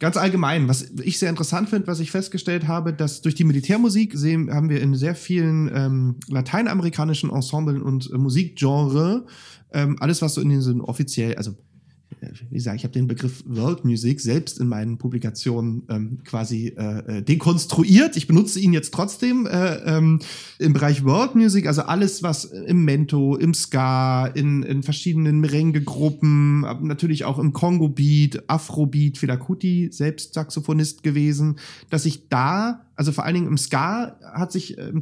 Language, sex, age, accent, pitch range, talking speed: German, male, 30-49, German, 145-185 Hz, 160 wpm